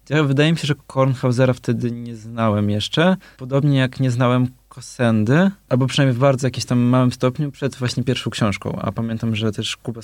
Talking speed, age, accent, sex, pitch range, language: 190 wpm, 20-39, native, male, 115-140 Hz, Polish